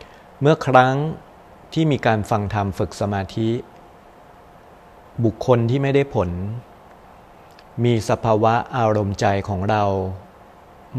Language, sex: Thai, male